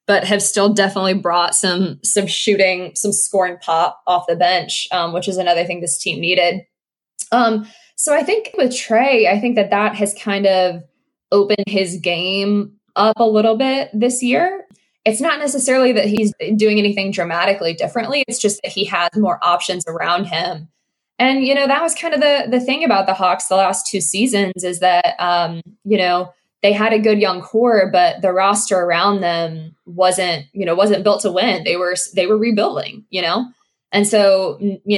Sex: female